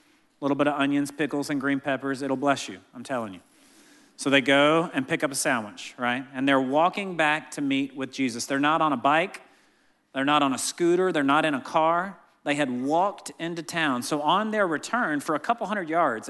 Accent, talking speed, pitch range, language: American, 225 wpm, 140-175 Hz, English